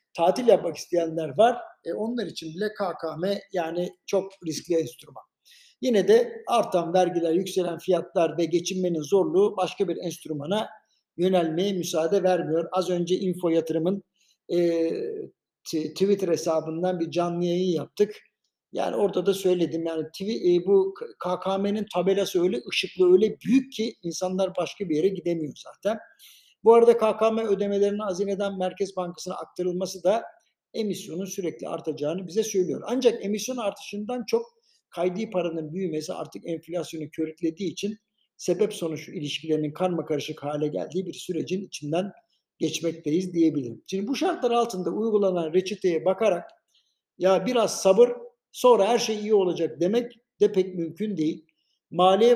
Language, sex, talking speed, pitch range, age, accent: Turkish, male, 135 wpm, 165-210 Hz, 60-79, native